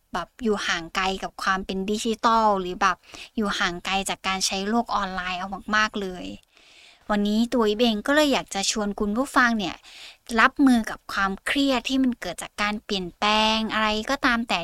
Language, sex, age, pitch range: Thai, female, 20-39, 195-245 Hz